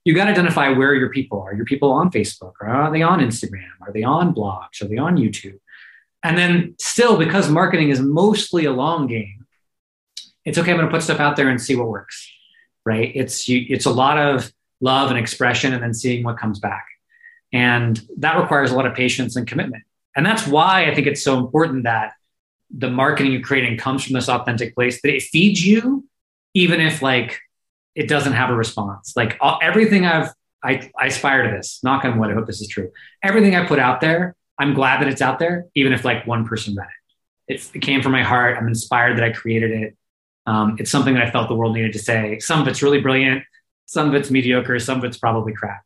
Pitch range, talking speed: 115-155 Hz, 230 wpm